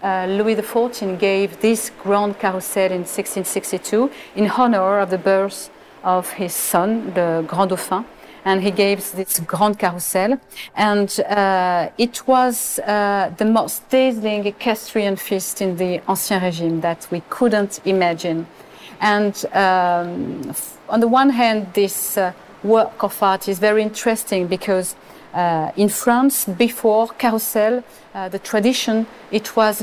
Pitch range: 185-225 Hz